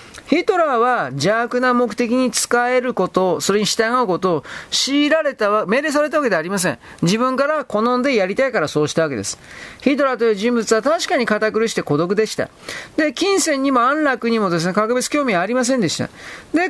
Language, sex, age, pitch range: Japanese, male, 40-59, 200-275 Hz